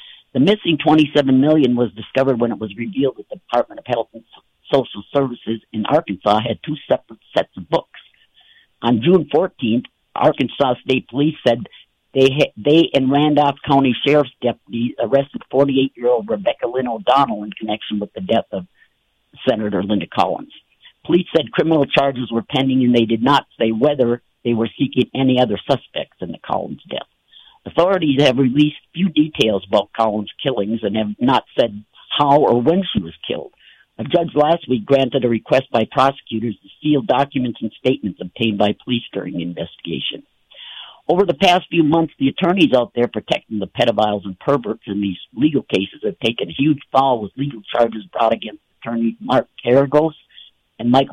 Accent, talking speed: American, 175 wpm